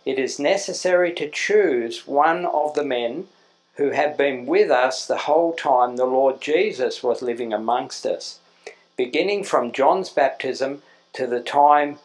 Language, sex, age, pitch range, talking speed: English, male, 50-69, 120-170 Hz, 155 wpm